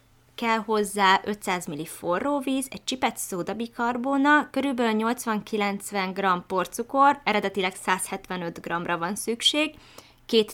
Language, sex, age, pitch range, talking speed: Hungarian, female, 20-39, 175-230 Hz, 110 wpm